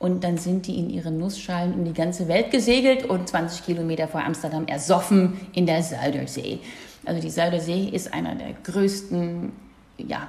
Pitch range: 165-210 Hz